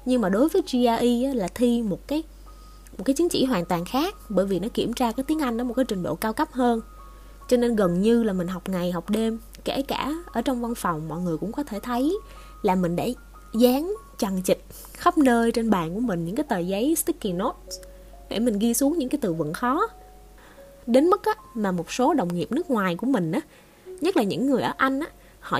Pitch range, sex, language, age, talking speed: 185-265 Hz, female, Vietnamese, 20-39, 240 wpm